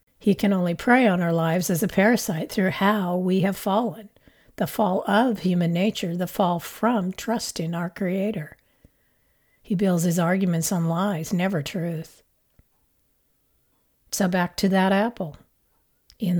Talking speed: 150 wpm